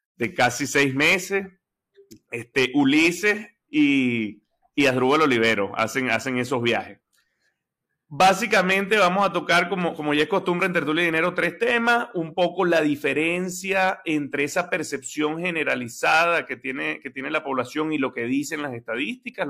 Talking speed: 150 wpm